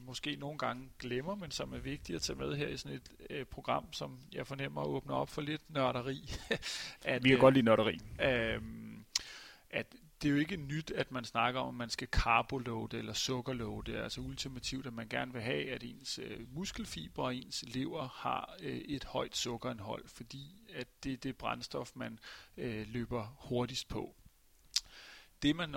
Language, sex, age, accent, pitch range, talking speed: Danish, male, 40-59, native, 115-145 Hz, 185 wpm